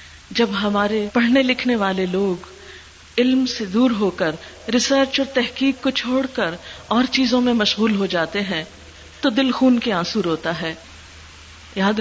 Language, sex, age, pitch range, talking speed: Urdu, female, 50-69, 175-240 Hz, 160 wpm